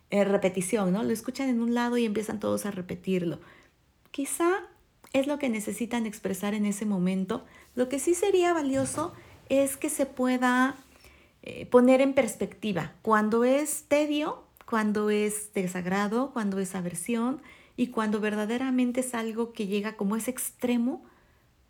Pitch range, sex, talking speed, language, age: 195-245 Hz, female, 150 wpm, Spanish, 40-59